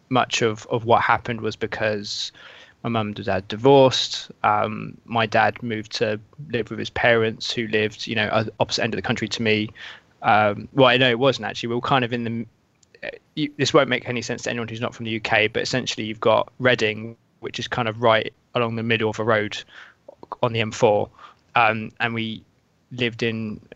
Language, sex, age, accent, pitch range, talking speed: English, male, 20-39, British, 110-125 Hz, 205 wpm